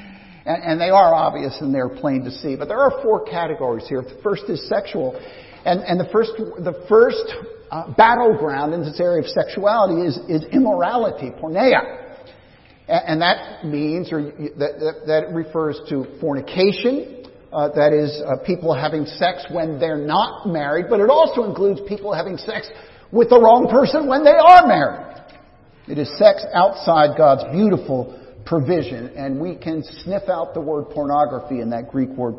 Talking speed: 165 wpm